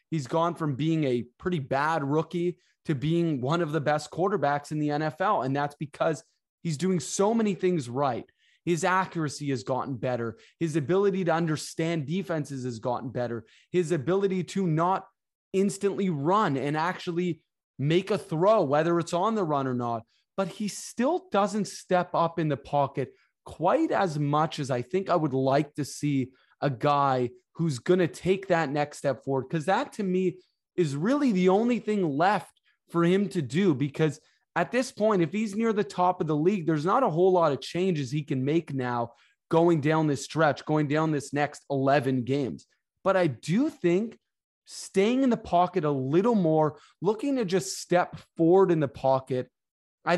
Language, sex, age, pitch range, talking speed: English, male, 20-39, 145-190 Hz, 185 wpm